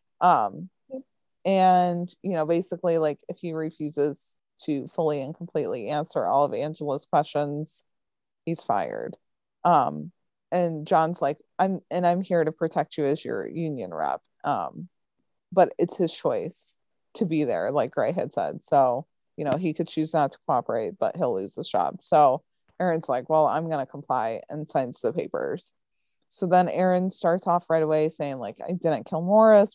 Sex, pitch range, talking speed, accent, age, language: female, 155-185 Hz, 170 wpm, American, 20-39, English